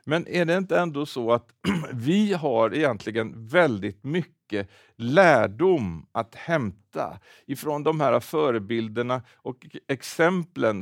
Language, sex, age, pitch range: Swedish, male, 60-79, 120-155 Hz